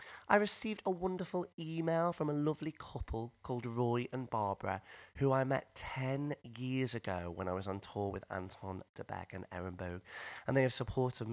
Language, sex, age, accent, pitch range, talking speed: English, male, 30-49, British, 100-135 Hz, 175 wpm